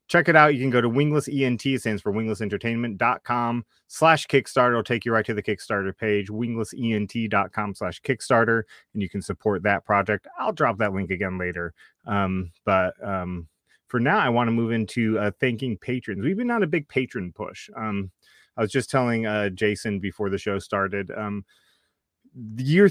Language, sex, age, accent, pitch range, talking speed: English, male, 30-49, American, 105-125 Hz, 190 wpm